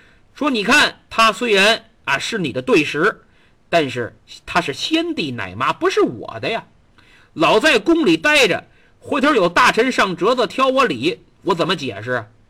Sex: male